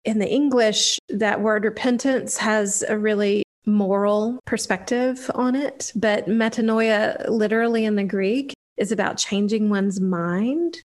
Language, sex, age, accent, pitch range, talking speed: English, female, 40-59, American, 195-220 Hz, 130 wpm